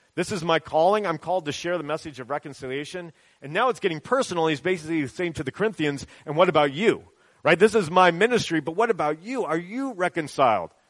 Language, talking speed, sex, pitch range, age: English, 215 wpm, male, 130-175 Hz, 40-59